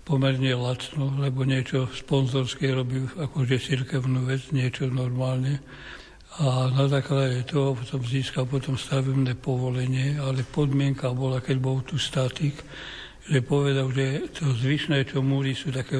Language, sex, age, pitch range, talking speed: Slovak, male, 60-79, 130-140 Hz, 135 wpm